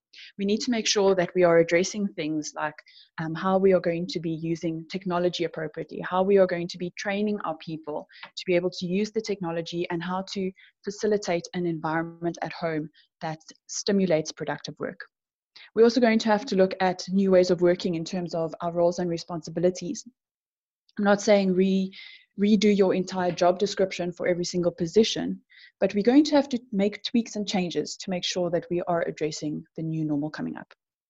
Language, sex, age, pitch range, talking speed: English, female, 20-39, 165-200 Hz, 200 wpm